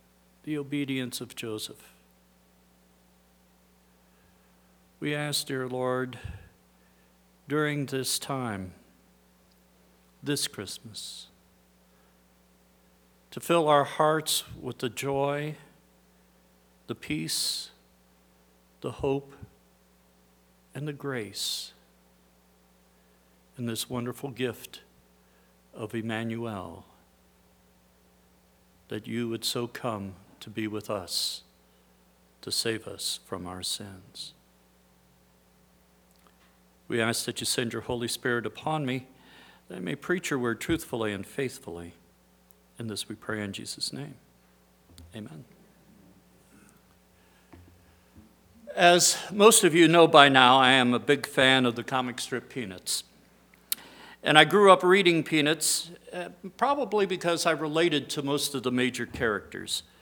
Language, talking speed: English, 110 wpm